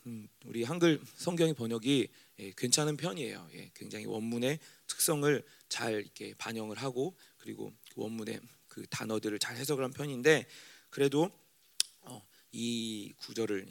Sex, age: male, 40-59